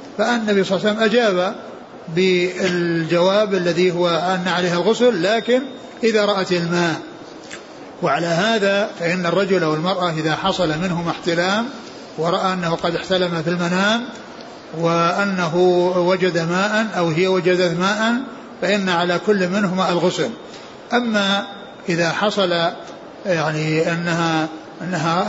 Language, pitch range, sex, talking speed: Arabic, 175-205 Hz, male, 120 wpm